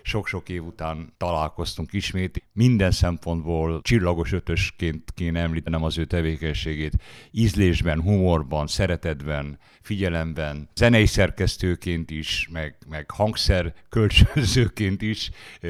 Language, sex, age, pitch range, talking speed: Hungarian, male, 60-79, 85-100 Hz, 95 wpm